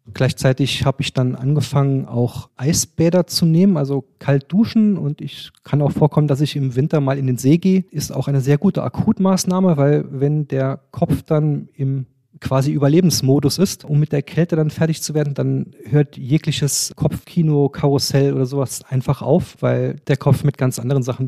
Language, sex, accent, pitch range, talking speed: German, male, German, 135-155 Hz, 185 wpm